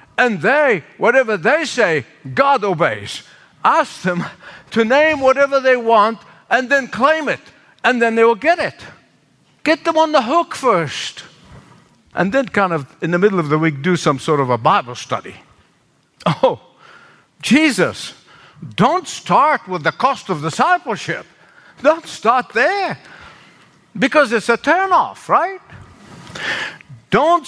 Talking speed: 145 wpm